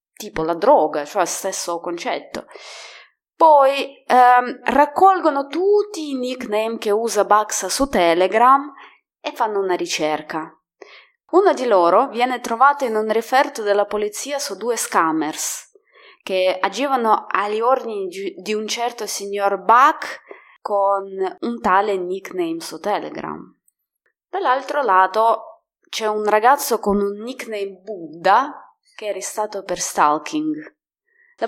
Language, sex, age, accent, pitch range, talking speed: Italian, female, 20-39, native, 185-270 Hz, 120 wpm